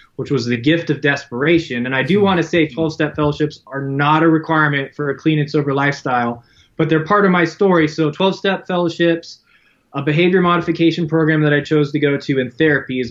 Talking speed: 210 wpm